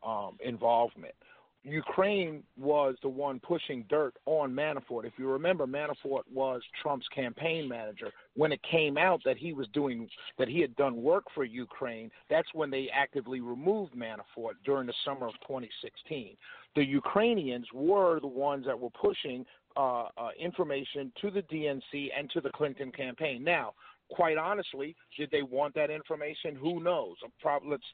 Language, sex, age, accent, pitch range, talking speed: English, male, 50-69, American, 135-170 Hz, 170 wpm